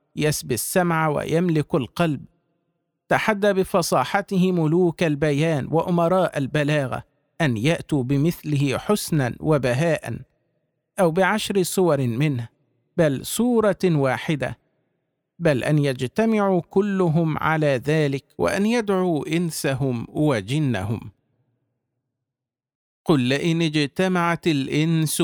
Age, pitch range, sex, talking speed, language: 50-69, 135-165 Hz, male, 85 wpm, Arabic